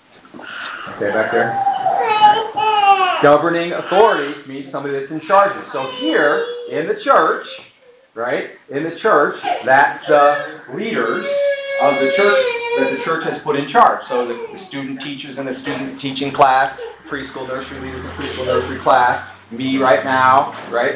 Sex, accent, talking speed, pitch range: male, American, 155 wpm, 130-200 Hz